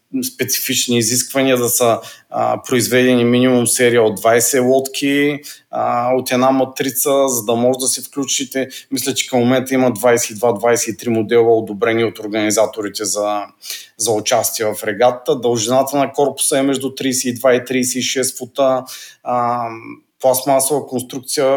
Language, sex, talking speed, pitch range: Bulgarian, male, 135 wpm, 120-135 Hz